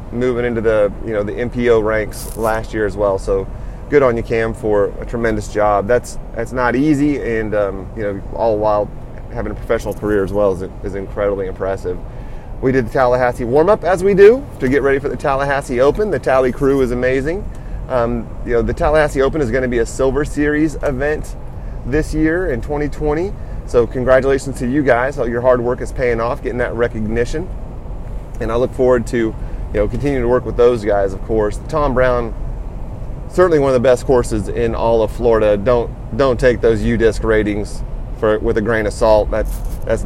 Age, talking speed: 30-49, 200 wpm